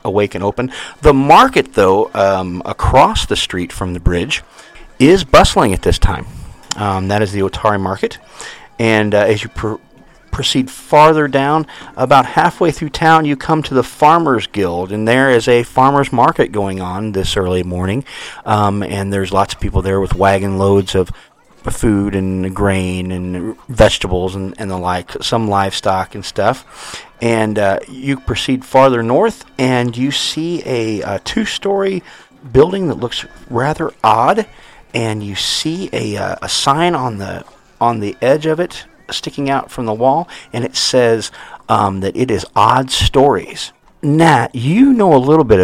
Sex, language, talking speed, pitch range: male, English, 165 wpm, 95-135 Hz